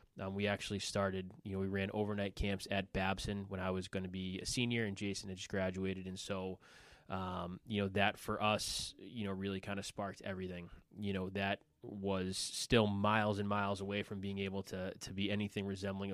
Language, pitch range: English, 95-105 Hz